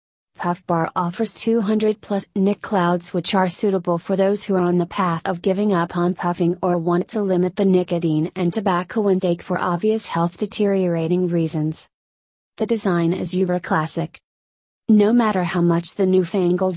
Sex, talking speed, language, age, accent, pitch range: female, 170 wpm, English, 30-49, American, 175-200 Hz